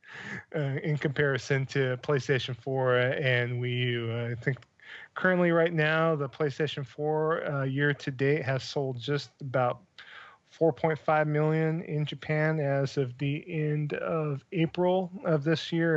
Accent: American